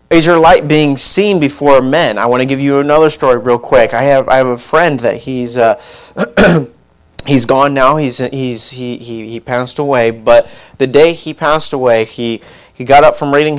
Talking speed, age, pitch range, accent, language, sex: 210 wpm, 30-49, 110-130 Hz, American, English, male